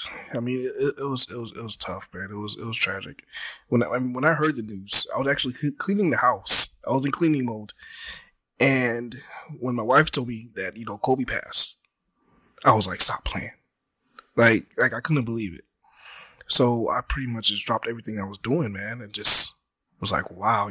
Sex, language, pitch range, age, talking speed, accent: male, English, 115-140 Hz, 20-39, 215 wpm, American